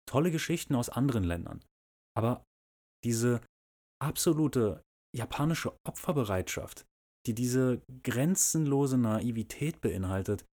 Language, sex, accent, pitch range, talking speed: German, male, German, 95-135 Hz, 85 wpm